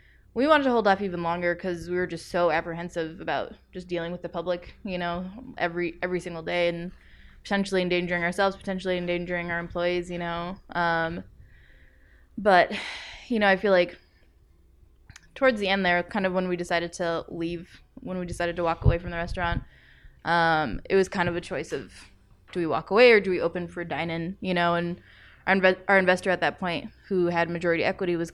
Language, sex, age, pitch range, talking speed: English, female, 20-39, 170-185 Hz, 205 wpm